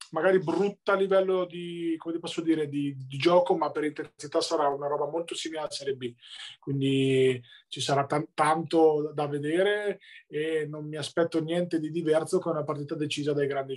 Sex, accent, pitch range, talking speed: male, native, 140-170 Hz, 190 wpm